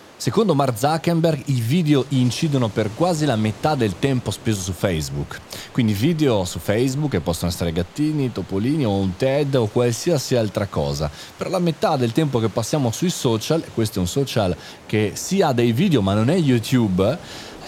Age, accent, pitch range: 30-49, native, 95-135 Hz